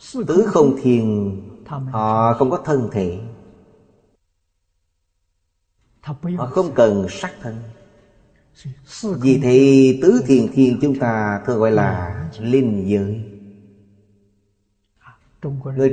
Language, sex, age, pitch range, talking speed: Vietnamese, male, 30-49, 105-140 Hz, 100 wpm